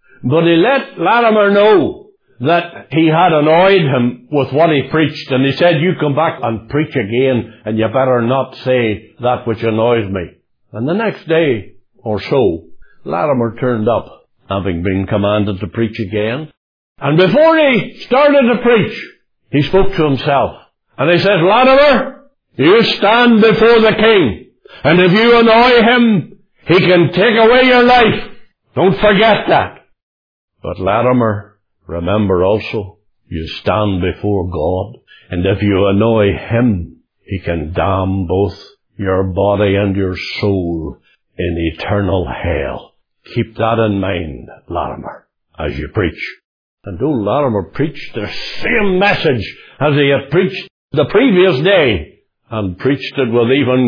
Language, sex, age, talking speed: English, male, 60-79, 145 wpm